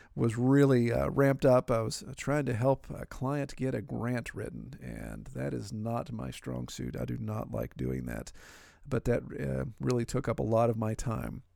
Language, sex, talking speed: English, male, 210 wpm